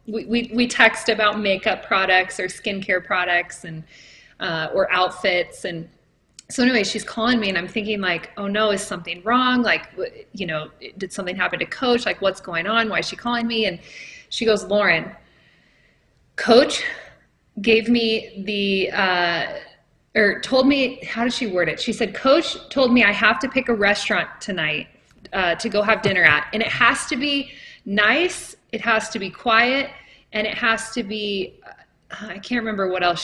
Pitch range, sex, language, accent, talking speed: 195-240 Hz, female, English, American, 185 wpm